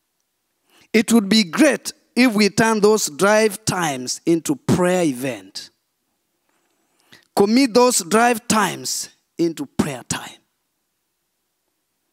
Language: English